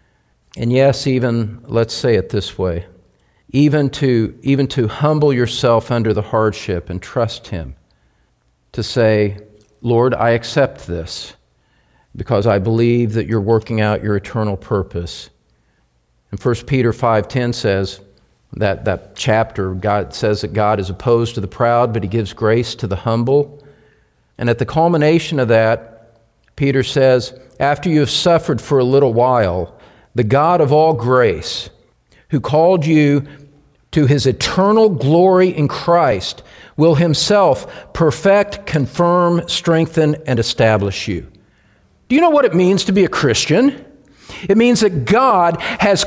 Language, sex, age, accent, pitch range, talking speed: English, male, 50-69, American, 110-175 Hz, 145 wpm